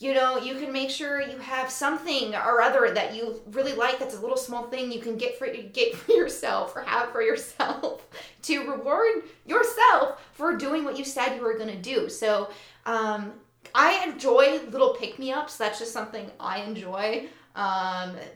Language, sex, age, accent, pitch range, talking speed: English, female, 20-39, American, 220-355 Hz, 185 wpm